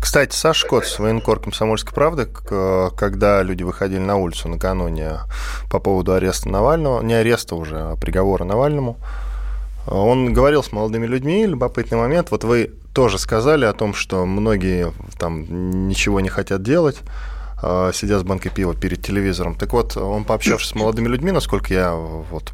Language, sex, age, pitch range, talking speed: Russian, male, 20-39, 90-115 Hz, 155 wpm